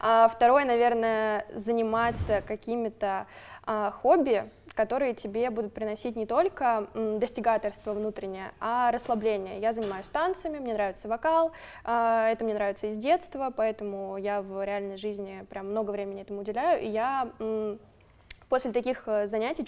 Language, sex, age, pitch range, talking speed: Russian, female, 20-39, 205-235 Hz, 125 wpm